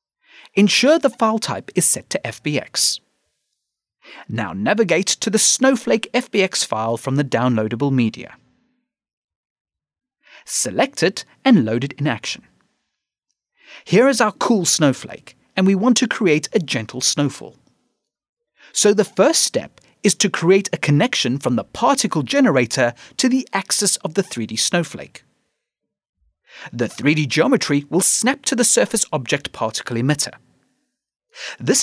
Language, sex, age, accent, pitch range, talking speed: English, male, 30-49, British, 140-230 Hz, 135 wpm